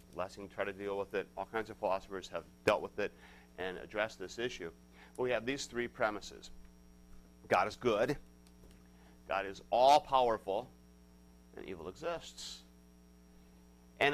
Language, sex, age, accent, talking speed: English, male, 40-59, American, 140 wpm